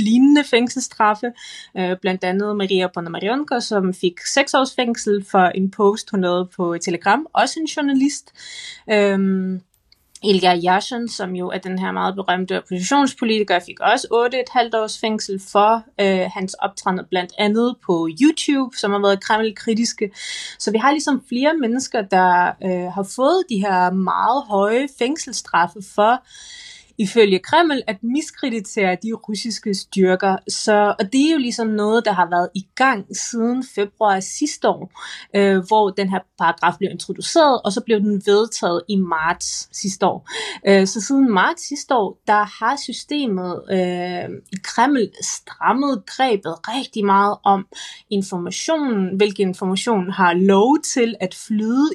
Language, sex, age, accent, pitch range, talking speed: Danish, female, 20-39, native, 190-250 Hz, 150 wpm